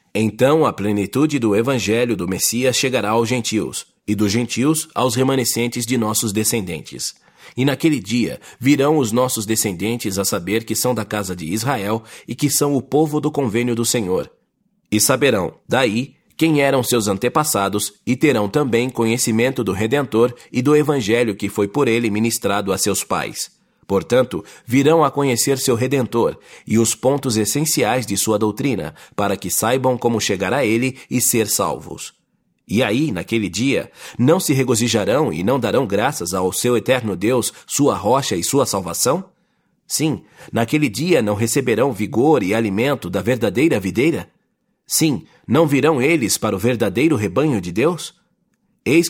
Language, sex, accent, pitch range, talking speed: English, male, Brazilian, 110-135 Hz, 160 wpm